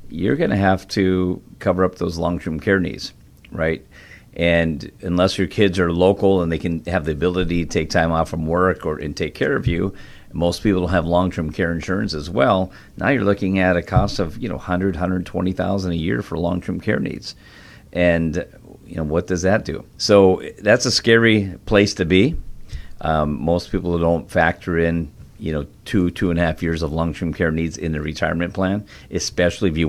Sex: male